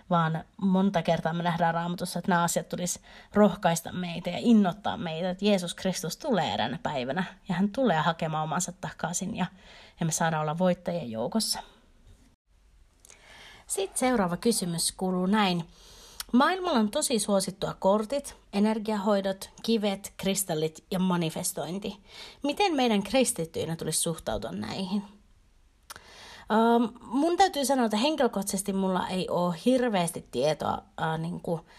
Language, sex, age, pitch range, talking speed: Finnish, female, 30-49, 165-215 Hz, 130 wpm